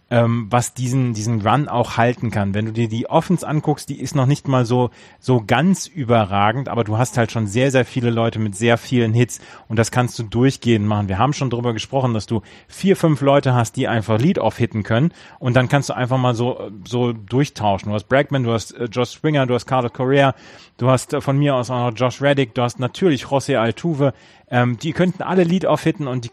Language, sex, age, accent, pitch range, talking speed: German, male, 30-49, German, 115-140 Hz, 225 wpm